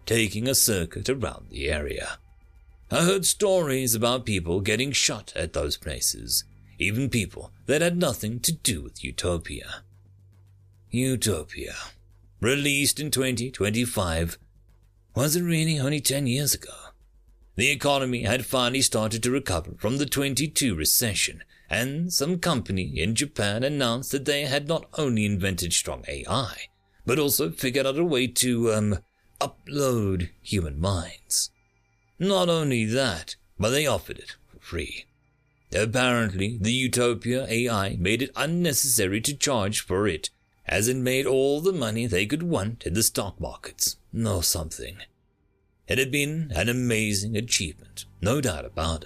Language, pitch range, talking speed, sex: English, 95-130 Hz, 140 wpm, male